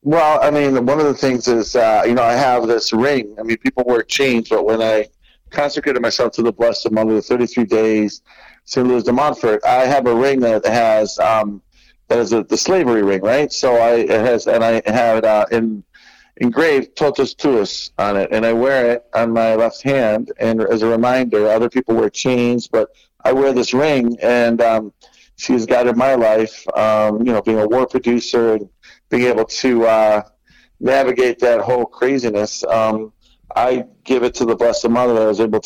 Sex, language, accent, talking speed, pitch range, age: male, English, American, 200 wpm, 110-125 Hz, 50-69